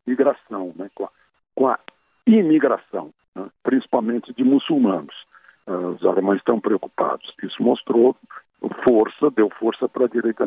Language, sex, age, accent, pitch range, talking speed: Portuguese, male, 60-79, Brazilian, 120-165 Hz, 140 wpm